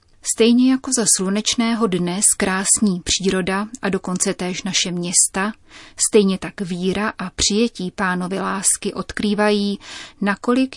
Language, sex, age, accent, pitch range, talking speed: Czech, female, 30-49, native, 185-215 Hz, 115 wpm